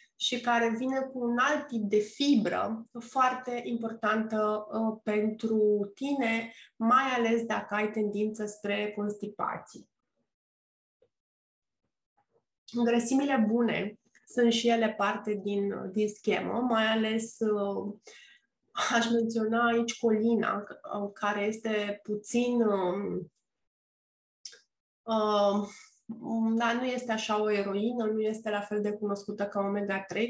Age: 20-39